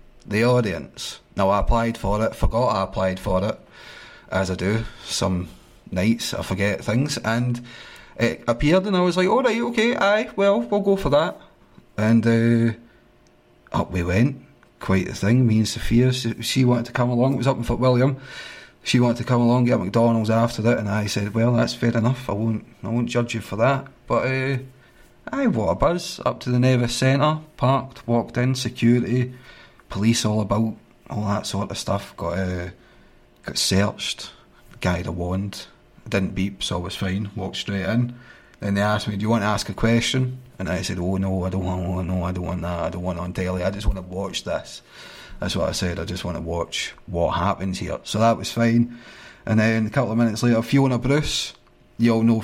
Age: 30-49